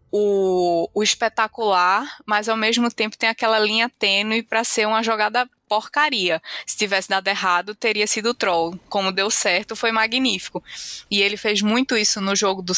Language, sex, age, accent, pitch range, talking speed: Portuguese, female, 20-39, Brazilian, 185-220 Hz, 170 wpm